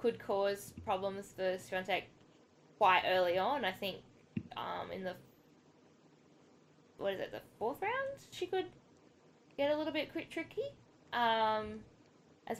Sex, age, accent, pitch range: female, 10-29, Australian, 195-220 Hz